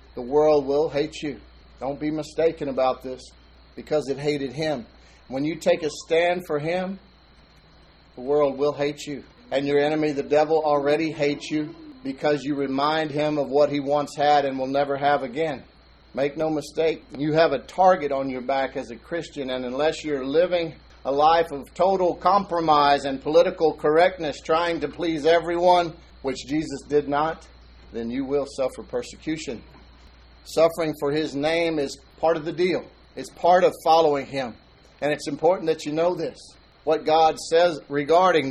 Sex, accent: male, American